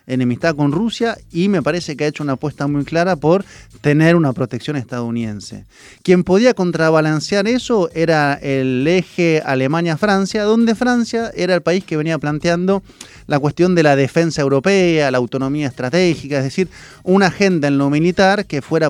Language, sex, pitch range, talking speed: Spanish, male, 130-175 Hz, 165 wpm